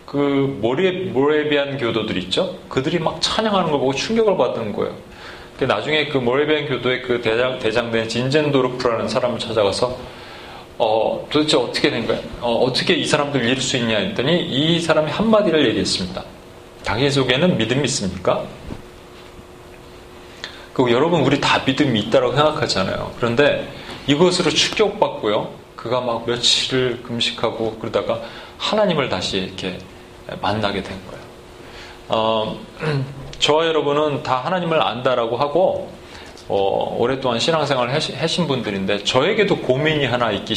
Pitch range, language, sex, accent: 115-150 Hz, Korean, male, native